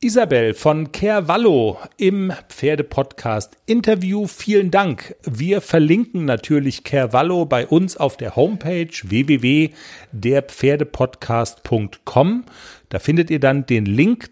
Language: German